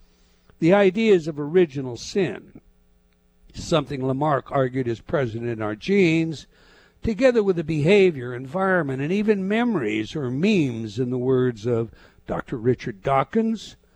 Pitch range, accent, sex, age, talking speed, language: 130-185 Hz, American, male, 60-79, 130 wpm, English